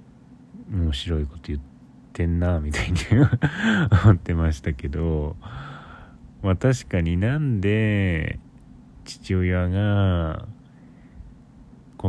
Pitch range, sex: 80-105 Hz, male